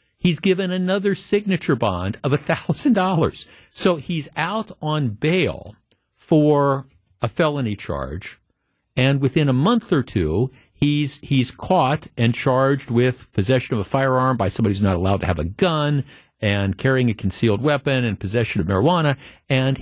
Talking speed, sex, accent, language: 155 wpm, male, American, English